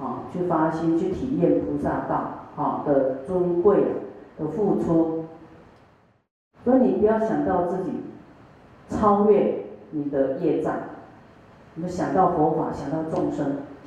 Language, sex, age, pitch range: Chinese, female, 40-59, 160-220 Hz